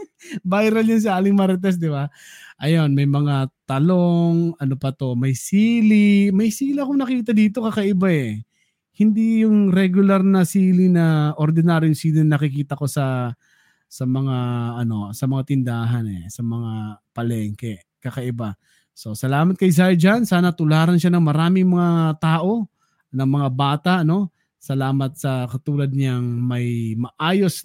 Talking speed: 150 wpm